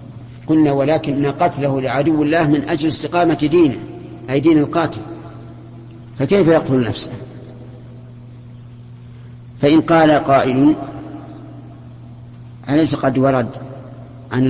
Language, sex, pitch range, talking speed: Arabic, male, 120-140 Hz, 90 wpm